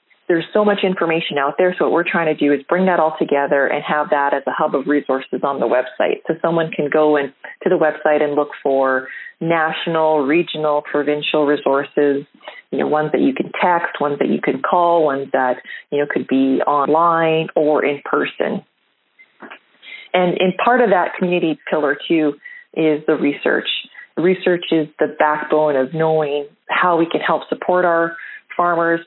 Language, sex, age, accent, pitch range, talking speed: English, female, 30-49, American, 150-175 Hz, 185 wpm